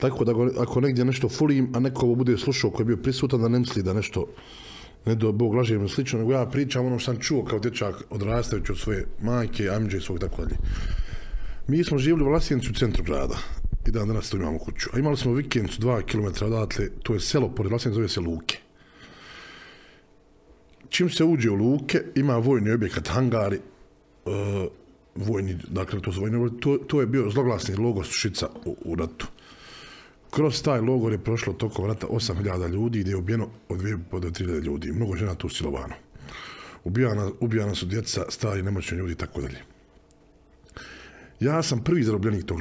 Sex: male